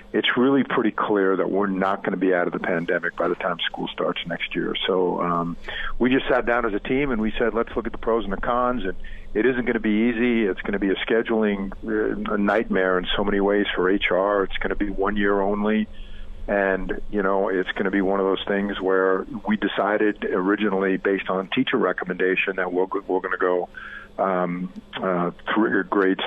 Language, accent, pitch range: English, American, 95-110 Hz